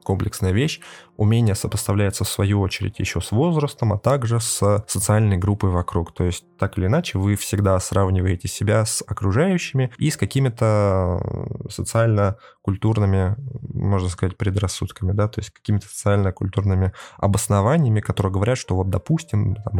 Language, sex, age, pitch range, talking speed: Russian, male, 20-39, 95-115 Hz, 135 wpm